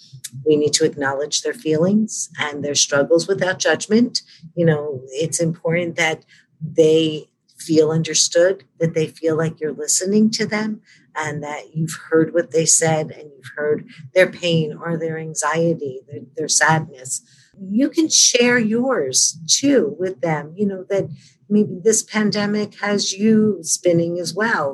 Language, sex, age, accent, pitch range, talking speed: English, female, 50-69, American, 155-190 Hz, 155 wpm